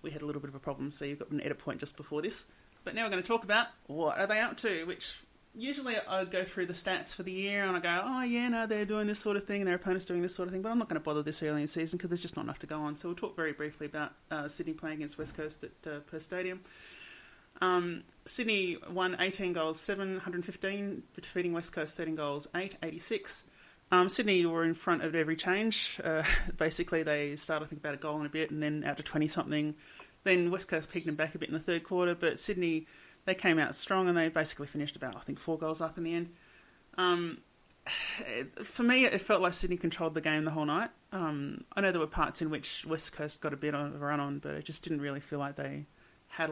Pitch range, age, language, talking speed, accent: 150-185 Hz, 30-49, English, 260 wpm, Australian